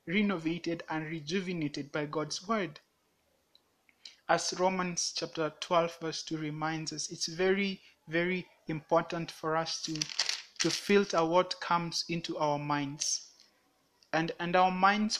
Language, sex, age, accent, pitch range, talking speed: English, male, 30-49, Nigerian, 155-180 Hz, 125 wpm